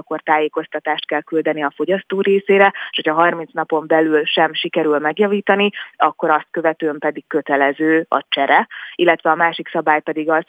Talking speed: 160 wpm